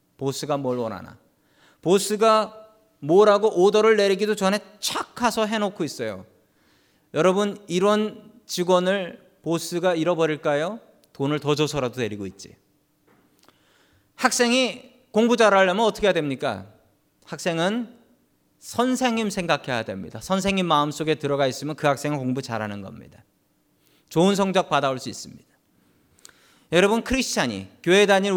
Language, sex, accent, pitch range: Korean, male, native, 150-220 Hz